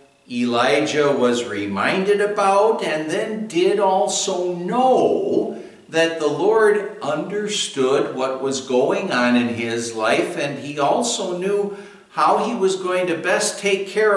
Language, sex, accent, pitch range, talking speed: English, male, American, 130-190 Hz, 135 wpm